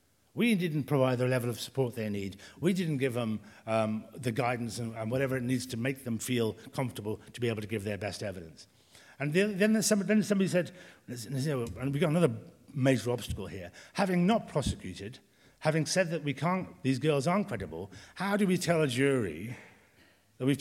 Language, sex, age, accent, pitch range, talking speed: English, male, 60-79, British, 110-175 Hz, 200 wpm